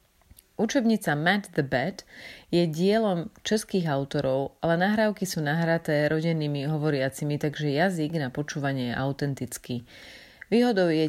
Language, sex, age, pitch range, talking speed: Slovak, female, 30-49, 145-180 Hz, 120 wpm